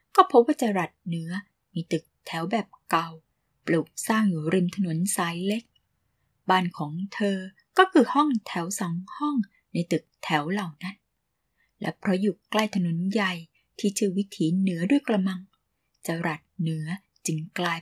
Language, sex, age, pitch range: Thai, female, 20-39, 170-210 Hz